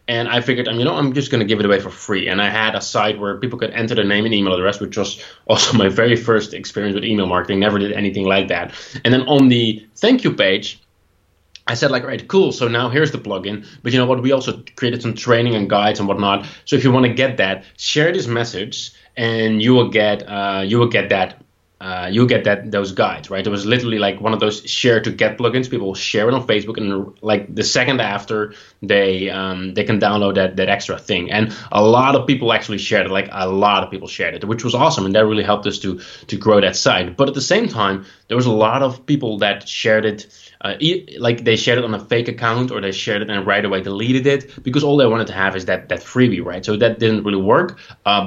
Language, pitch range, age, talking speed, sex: English, 100-120 Hz, 20-39, 260 wpm, male